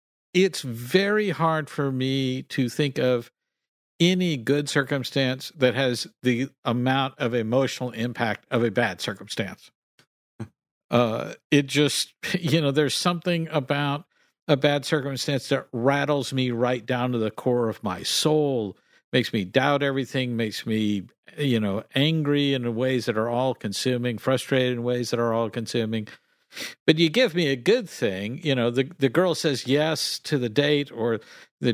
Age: 50-69